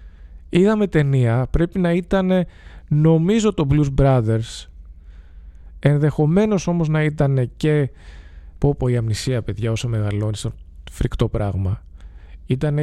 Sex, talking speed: male, 110 wpm